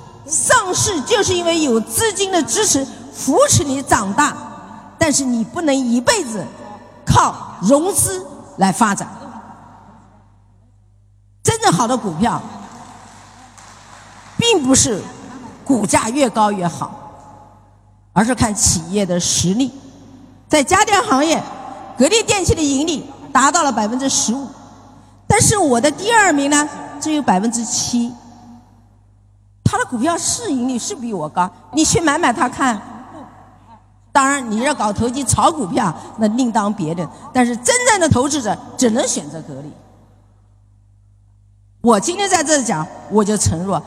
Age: 50-69